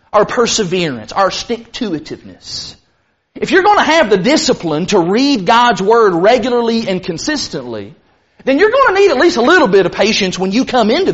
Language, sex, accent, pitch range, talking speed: English, male, American, 210-270 Hz, 185 wpm